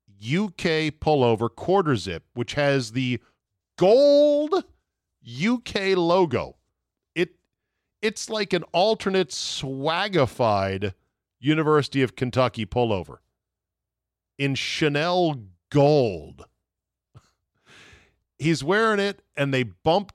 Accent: American